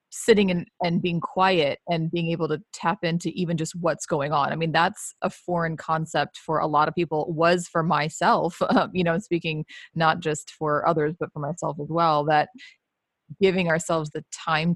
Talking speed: 200 wpm